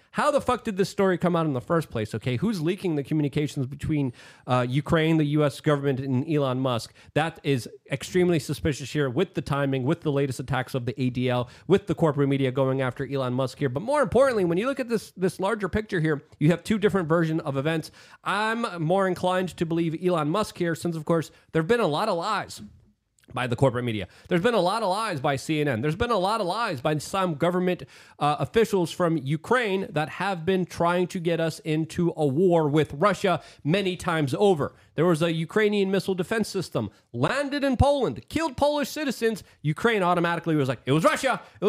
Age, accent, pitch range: 30-49, American, 145-215 Hz